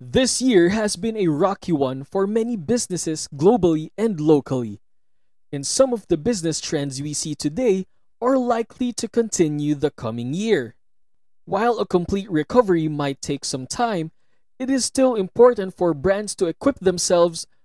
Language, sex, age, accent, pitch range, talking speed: English, male, 20-39, Filipino, 150-235 Hz, 155 wpm